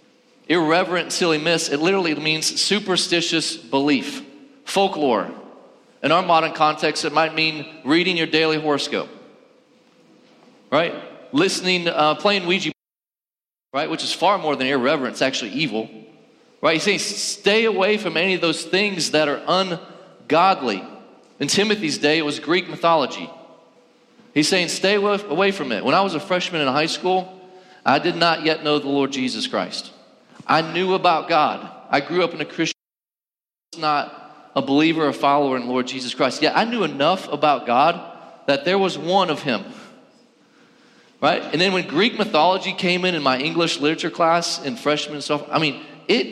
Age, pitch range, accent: 40-59, 150-190 Hz, American